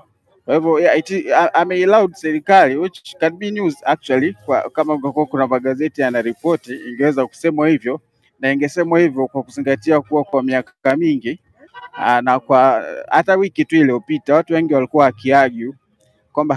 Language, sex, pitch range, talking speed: Swahili, male, 125-160 Hz, 130 wpm